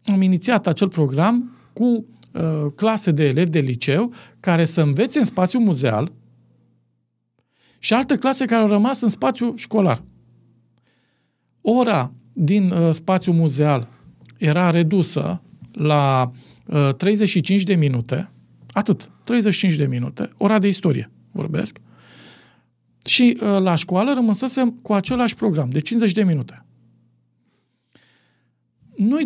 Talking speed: 115 wpm